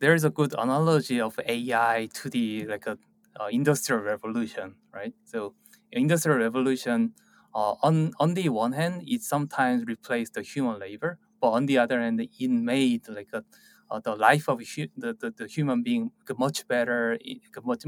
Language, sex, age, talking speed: English, male, 20-39, 175 wpm